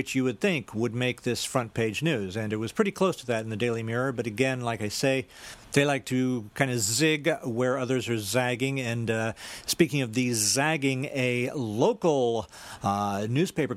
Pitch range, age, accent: 110-140 Hz, 50-69, American